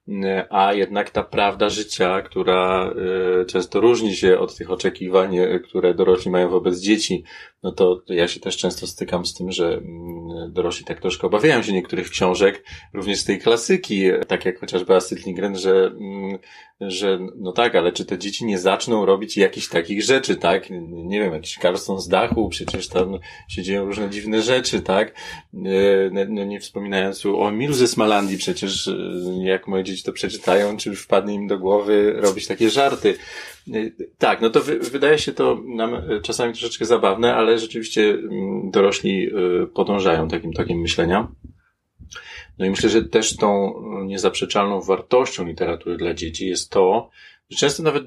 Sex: male